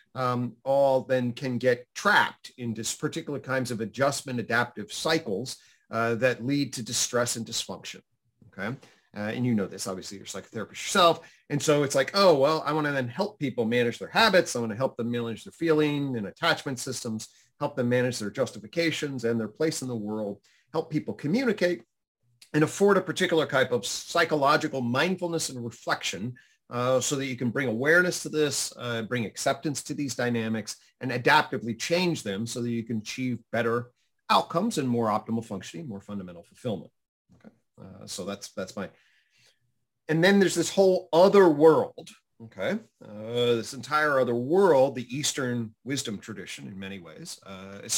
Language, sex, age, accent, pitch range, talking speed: English, male, 40-59, American, 115-155 Hz, 175 wpm